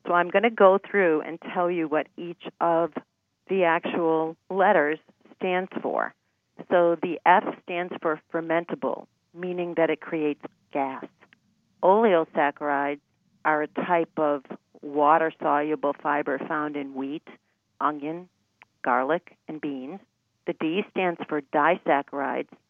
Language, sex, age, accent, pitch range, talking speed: English, female, 50-69, American, 150-175 Hz, 125 wpm